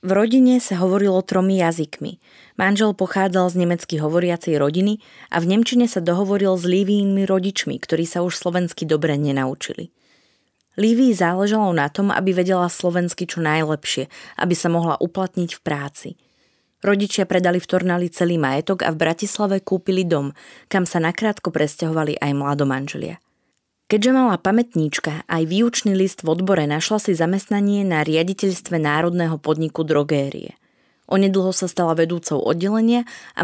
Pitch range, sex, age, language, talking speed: 160-195 Hz, female, 20-39, Slovak, 145 wpm